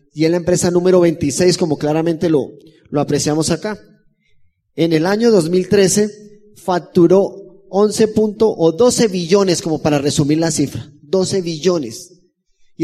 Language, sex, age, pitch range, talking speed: Spanish, male, 30-49, 165-205 Hz, 135 wpm